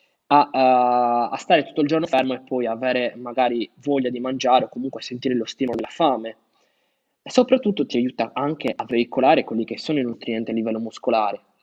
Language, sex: Italian, male